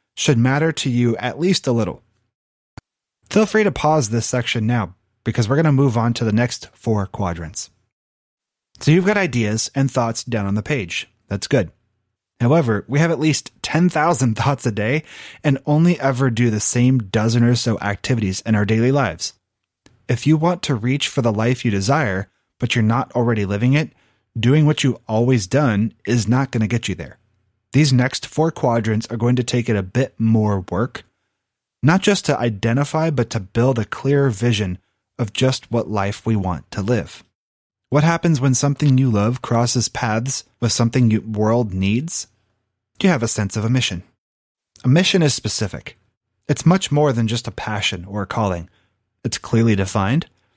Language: English